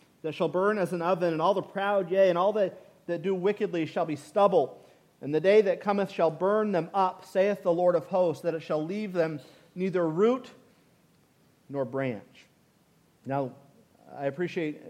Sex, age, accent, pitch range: male, 40-59, American, 160-205 Hz